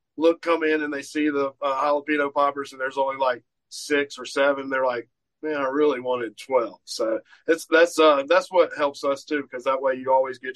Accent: American